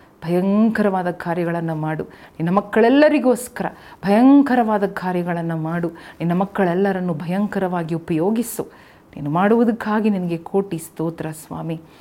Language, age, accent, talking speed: Kannada, 40-59, native, 90 wpm